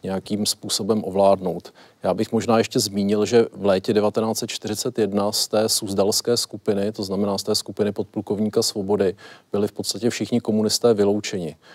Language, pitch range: Czech, 100-110 Hz